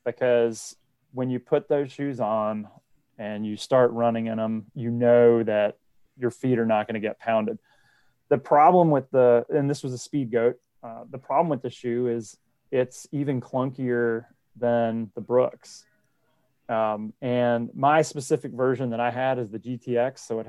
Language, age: English, 30-49